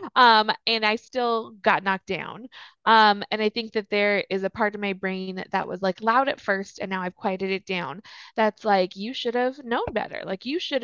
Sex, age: female, 20-39